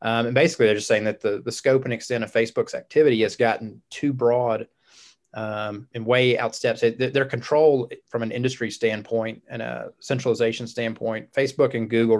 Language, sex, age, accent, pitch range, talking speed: English, male, 30-49, American, 115-130 Hz, 180 wpm